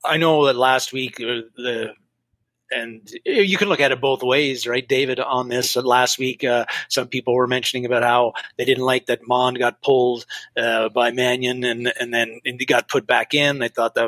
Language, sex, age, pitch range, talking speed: English, male, 30-49, 120-145 Hz, 215 wpm